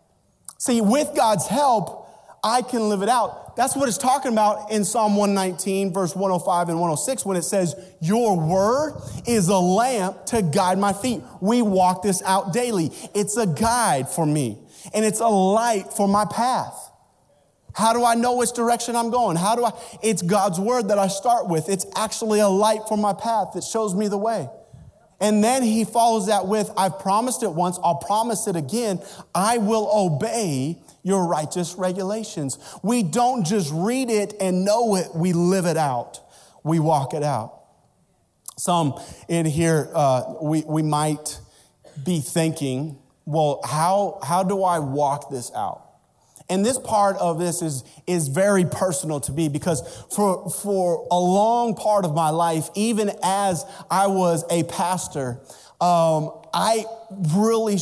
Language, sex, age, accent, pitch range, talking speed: English, male, 30-49, American, 165-215 Hz, 170 wpm